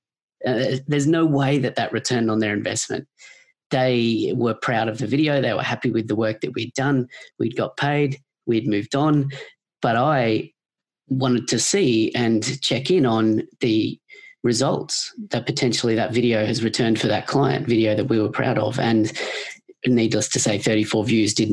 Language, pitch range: English, 110-140 Hz